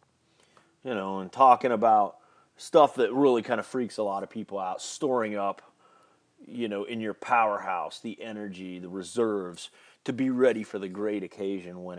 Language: English